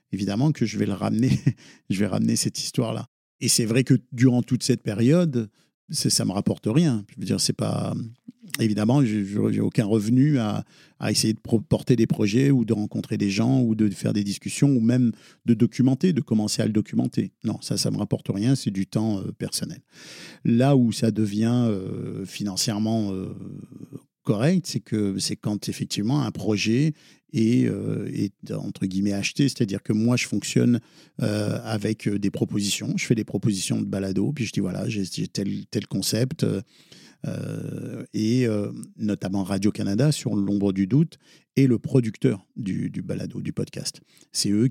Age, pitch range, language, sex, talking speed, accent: 50-69, 105-125 Hz, French, male, 180 wpm, French